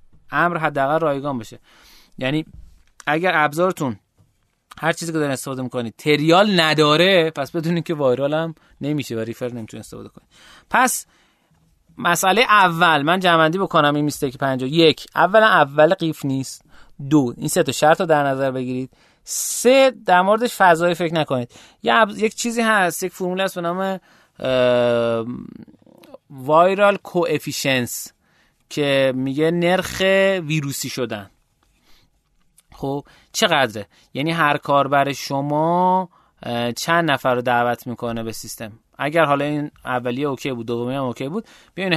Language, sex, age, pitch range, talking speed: Persian, male, 30-49, 125-165 Hz, 130 wpm